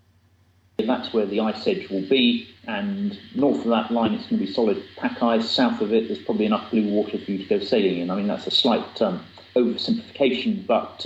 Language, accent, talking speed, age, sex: German, British, 220 wpm, 40-59, male